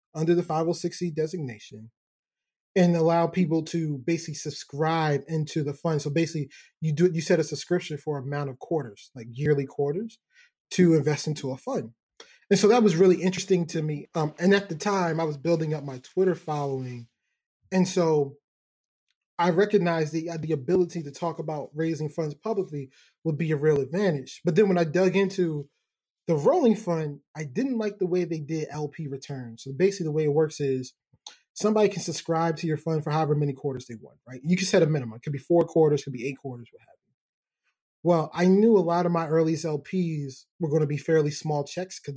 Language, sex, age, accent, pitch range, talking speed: English, male, 20-39, American, 145-175 Hz, 205 wpm